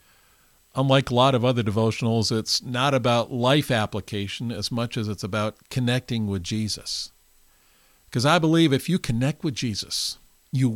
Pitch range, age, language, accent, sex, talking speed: 105-135 Hz, 50-69, English, American, male, 155 wpm